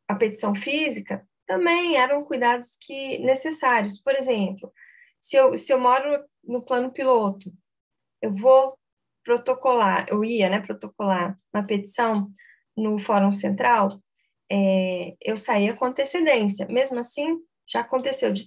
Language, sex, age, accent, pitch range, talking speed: Portuguese, female, 10-29, Brazilian, 205-255 Hz, 120 wpm